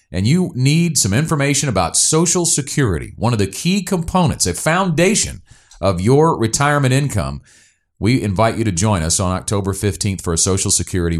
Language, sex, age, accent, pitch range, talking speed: English, male, 40-59, American, 100-135 Hz, 170 wpm